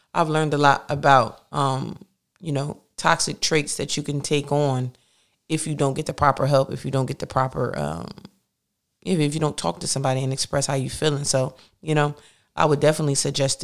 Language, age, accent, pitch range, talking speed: English, 30-49, American, 140-160 Hz, 210 wpm